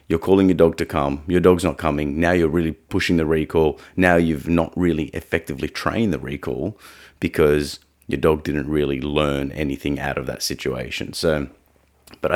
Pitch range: 75-85 Hz